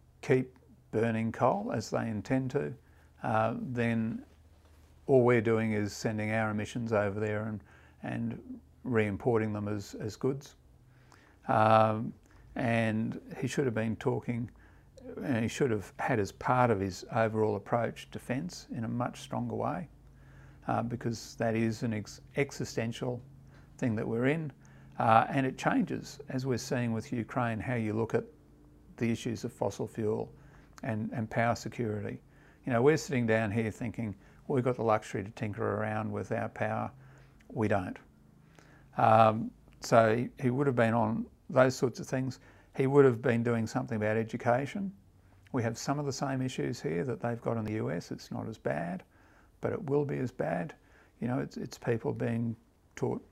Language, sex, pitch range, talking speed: English, male, 110-130 Hz, 170 wpm